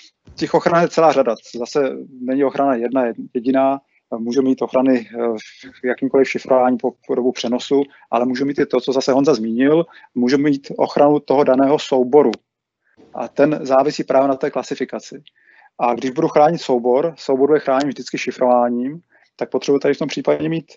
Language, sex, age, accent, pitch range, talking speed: Czech, male, 30-49, native, 130-145 Hz, 170 wpm